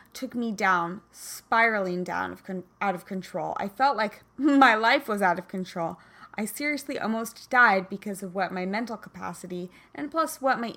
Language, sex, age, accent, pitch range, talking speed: English, female, 20-39, American, 185-225 Hz, 185 wpm